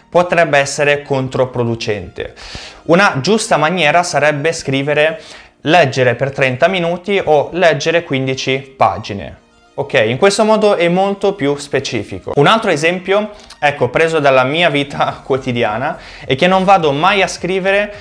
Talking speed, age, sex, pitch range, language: 135 wpm, 20-39, male, 130-180 Hz, Italian